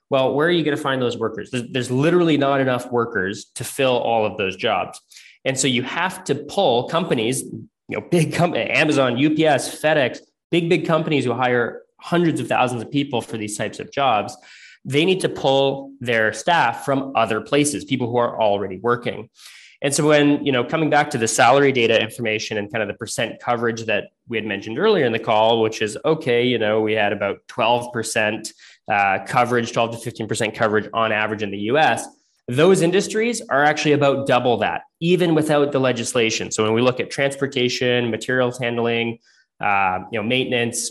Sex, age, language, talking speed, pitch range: male, 20-39, English, 195 wpm, 115-145 Hz